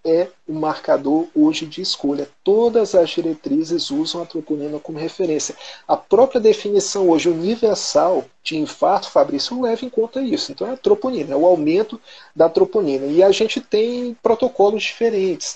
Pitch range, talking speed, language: 175-260 Hz, 160 wpm, Portuguese